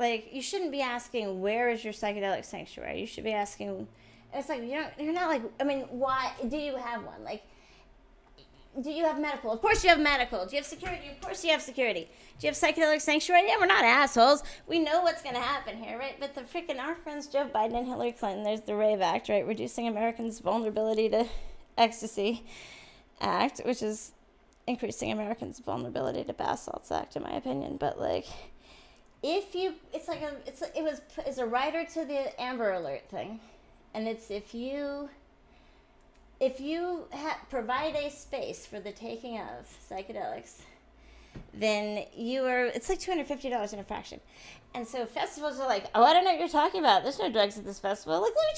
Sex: female